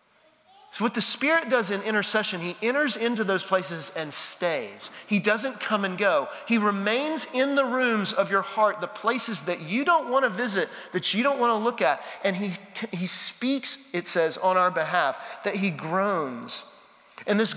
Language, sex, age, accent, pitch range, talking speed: English, male, 40-59, American, 185-240 Hz, 190 wpm